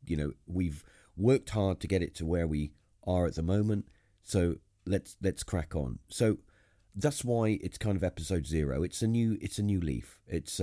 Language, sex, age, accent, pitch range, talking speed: English, male, 40-59, British, 75-100 Hz, 205 wpm